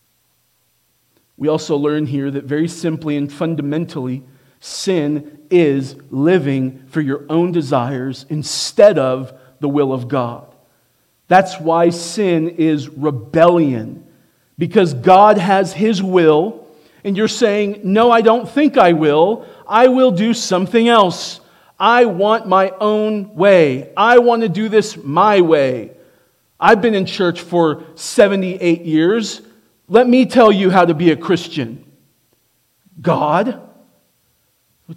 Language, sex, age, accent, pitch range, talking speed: English, male, 40-59, American, 150-225 Hz, 130 wpm